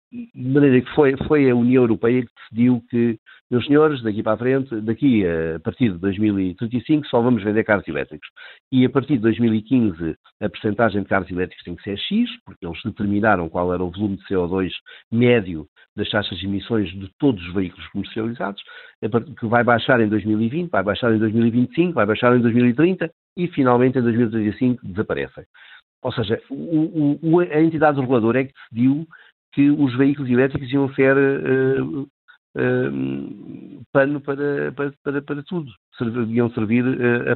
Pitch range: 105-130 Hz